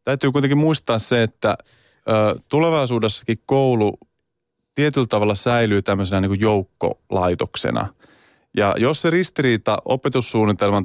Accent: native